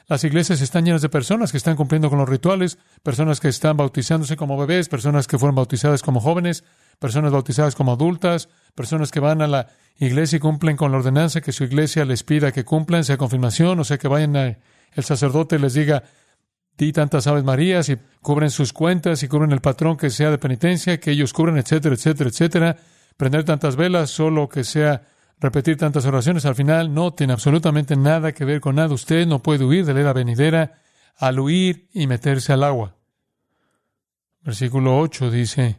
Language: Spanish